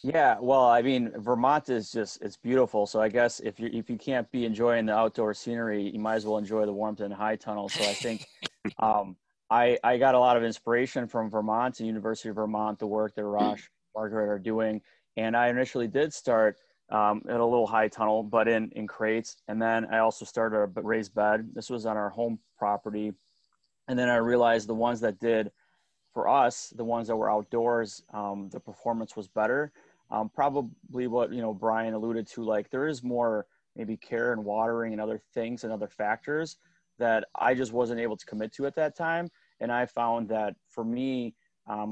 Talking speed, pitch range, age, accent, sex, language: 210 wpm, 105-120 Hz, 30-49, American, male, English